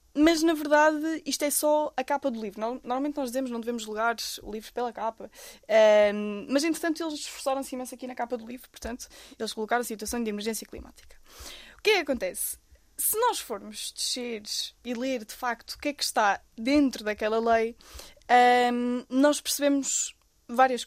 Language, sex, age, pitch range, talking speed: Portuguese, female, 20-39, 235-285 Hz, 185 wpm